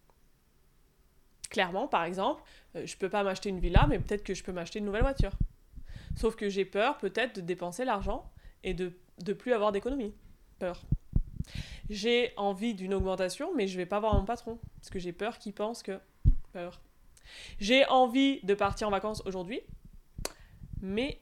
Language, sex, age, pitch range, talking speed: French, female, 20-39, 185-250 Hz, 175 wpm